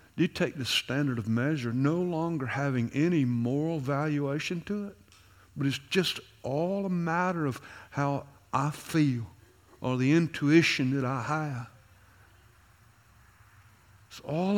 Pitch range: 110-150 Hz